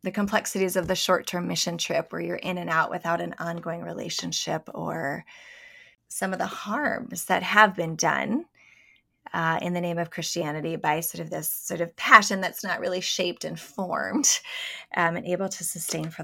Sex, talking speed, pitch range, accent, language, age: female, 185 wpm, 175-230 Hz, American, English, 20-39